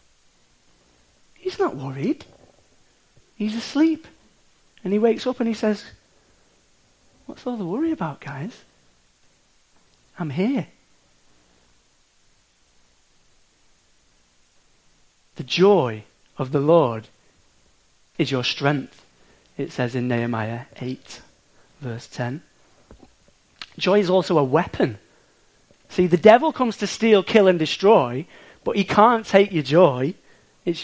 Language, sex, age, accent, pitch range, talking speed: English, male, 40-59, British, 110-180 Hz, 110 wpm